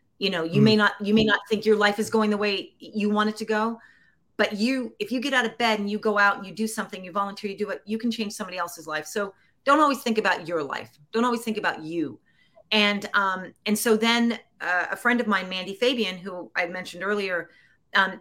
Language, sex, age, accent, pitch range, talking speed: English, female, 40-59, American, 180-220 Hz, 250 wpm